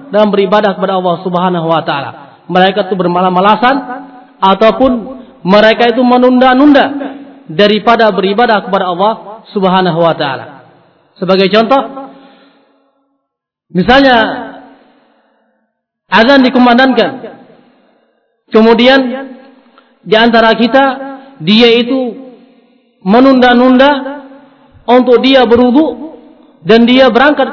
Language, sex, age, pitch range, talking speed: English, male, 40-59, 210-265 Hz, 85 wpm